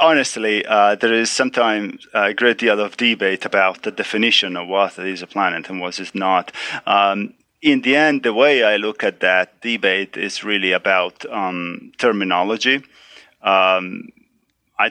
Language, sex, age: English, male, 30-49